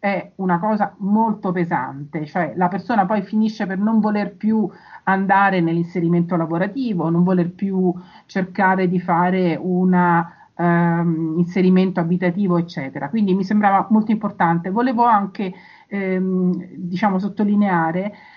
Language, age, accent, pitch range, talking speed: Italian, 50-69, native, 175-210 Hz, 125 wpm